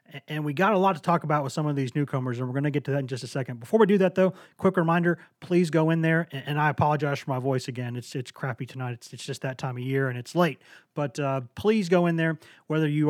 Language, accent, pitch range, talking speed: English, American, 135-155 Hz, 295 wpm